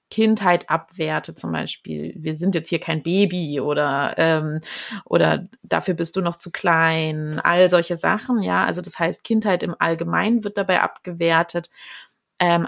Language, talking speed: German, 155 wpm